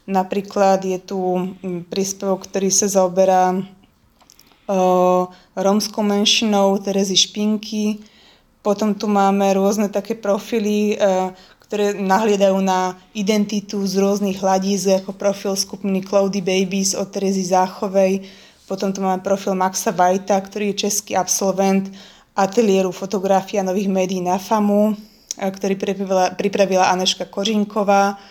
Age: 20-39